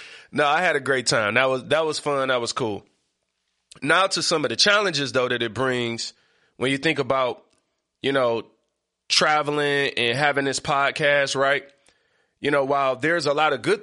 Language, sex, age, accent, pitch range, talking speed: English, male, 20-39, American, 125-150 Hz, 190 wpm